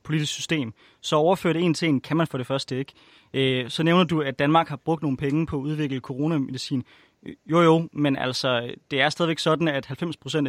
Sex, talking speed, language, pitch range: male, 205 wpm, Danish, 140-175 Hz